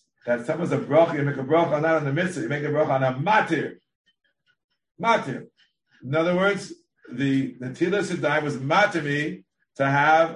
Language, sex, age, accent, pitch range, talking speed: Hebrew, male, 50-69, American, 135-195 Hz, 190 wpm